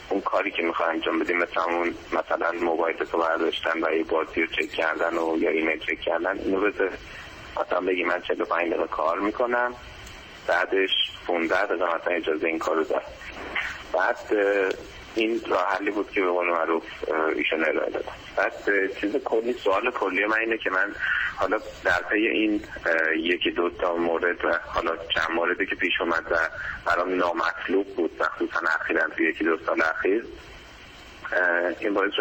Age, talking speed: 30-49, 155 wpm